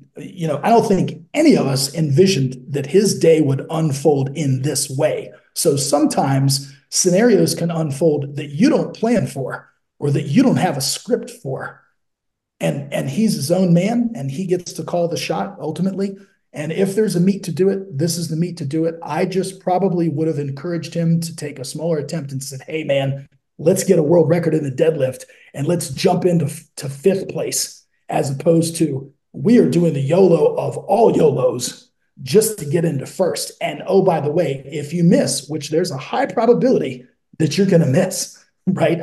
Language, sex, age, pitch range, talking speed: English, male, 40-59, 145-185 Hz, 200 wpm